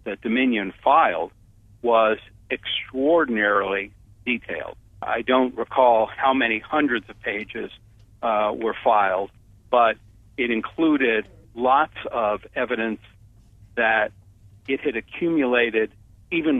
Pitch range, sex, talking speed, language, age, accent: 105-120 Hz, male, 100 wpm, English, 60-79, American